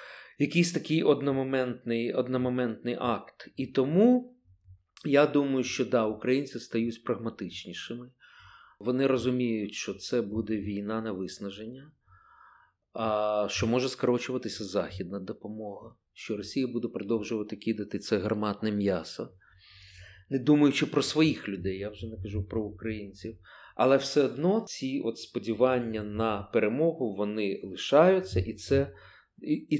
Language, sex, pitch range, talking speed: Ukrainian, male, 110-155 Hz, 120 wpm